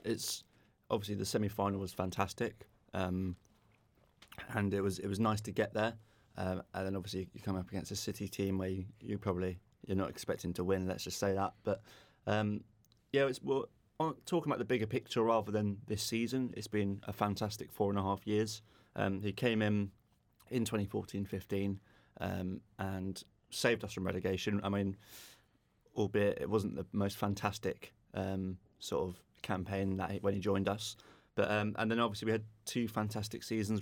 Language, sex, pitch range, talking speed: English, male, 95-110 Hz, 185 wpm